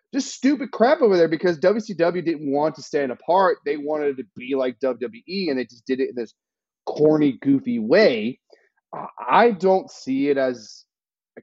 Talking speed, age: 185 wpm, 30-49